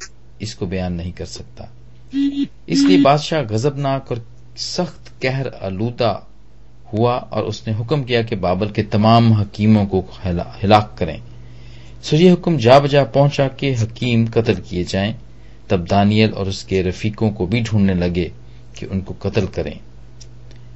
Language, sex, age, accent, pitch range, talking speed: Hindi, male, 40-59, native, 105-135 Hz, 135 wpm